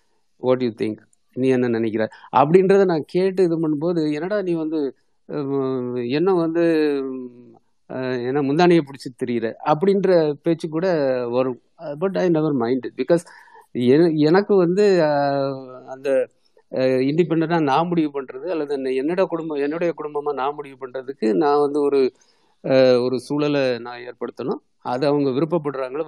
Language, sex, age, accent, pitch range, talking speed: Tamil, male, 50-69, native, 130-180 Hz, 125 wpm